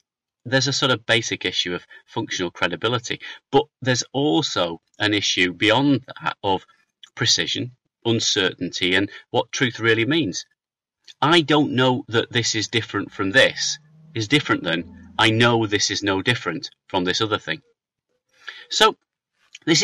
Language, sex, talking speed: English, male, 145 wpm